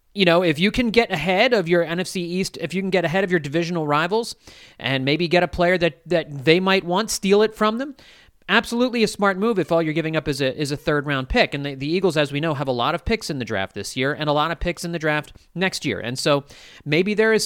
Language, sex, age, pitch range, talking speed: English, male, 40-59, 135-180 Hz, 280 wpm